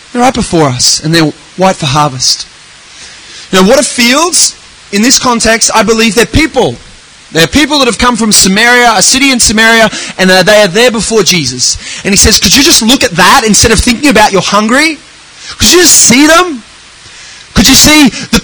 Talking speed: 200 wpm